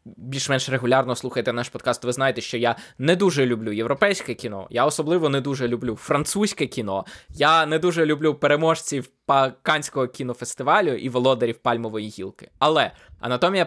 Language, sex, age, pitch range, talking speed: Ukrainian, male, 20-39, 125-155 Hz, 150 wpm